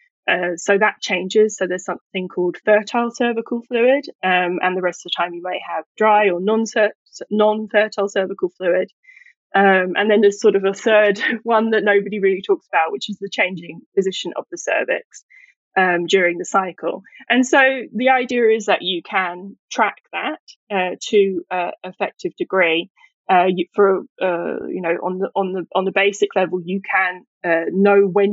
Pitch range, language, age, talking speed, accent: 180-215 Hz, English, 10-29, 180 wpm, British